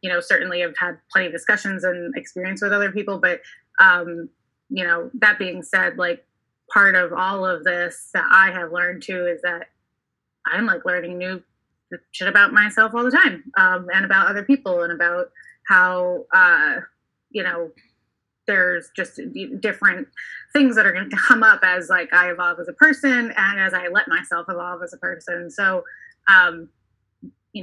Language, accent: English, American